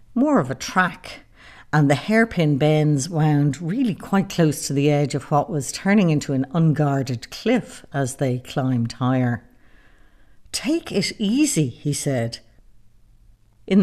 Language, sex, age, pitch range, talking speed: English, female, 60-79, 140-200 Hz, 145 wpm